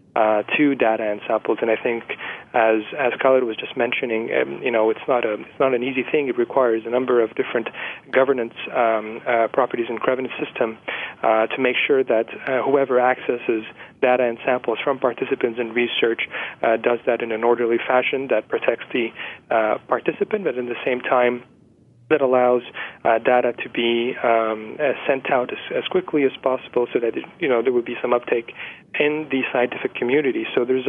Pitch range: 120-150 Hz